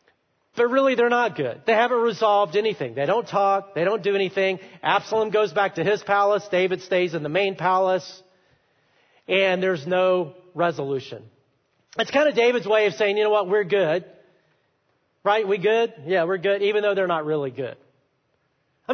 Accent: American